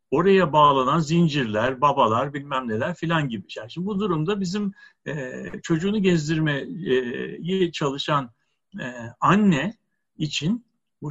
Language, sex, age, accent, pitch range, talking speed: Turkish, male, 60-79, native, 150-205 Hz, 115 wpm